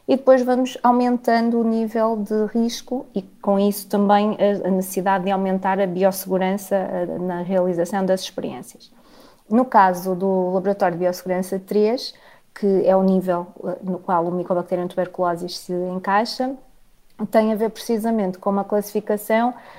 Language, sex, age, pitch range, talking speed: Portuguese, female, 20-39, 185-220 Hz, 145 wpm